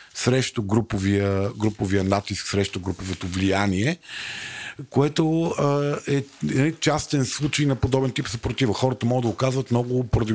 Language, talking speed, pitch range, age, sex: Bulgarian, 135 wpm, 105-135 Hz, 50-69, male